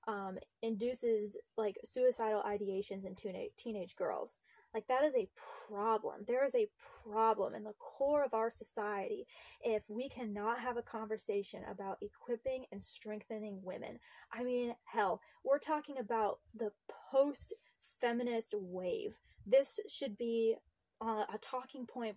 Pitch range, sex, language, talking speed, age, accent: 215-275 Hz, female, English, 135 wpm, 10-29, American